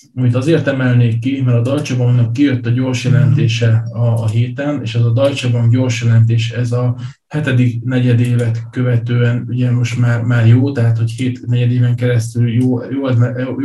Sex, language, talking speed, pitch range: male, Hungarian, 165 wpm, 120-140 Hz